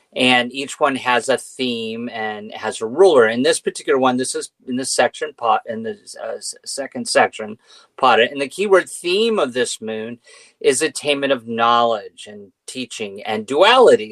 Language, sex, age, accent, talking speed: English, male, 40-59, American, 170 wpm